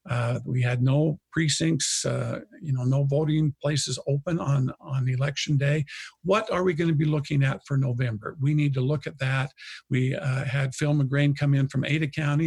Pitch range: 130-150 Hz